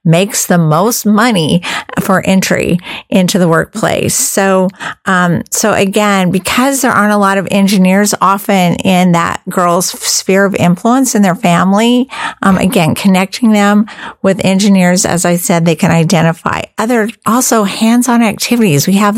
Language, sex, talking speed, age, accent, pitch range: English, female, 150 wpm, 50-69, American, 175-215 Hz